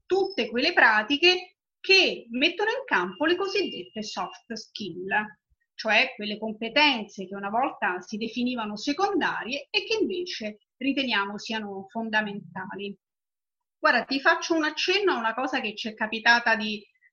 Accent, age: native, 30-49